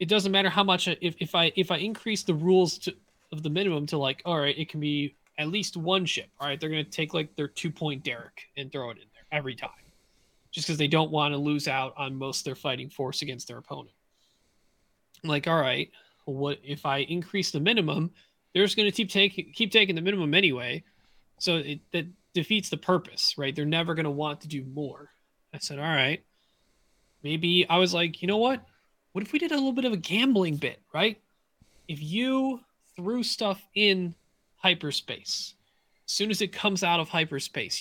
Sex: male